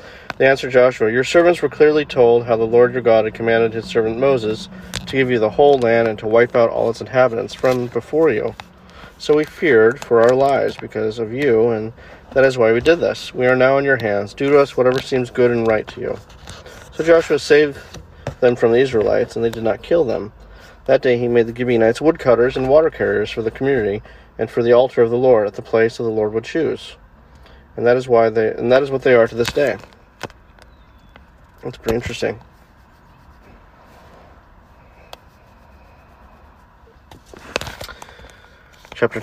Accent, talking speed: American, 185 wpm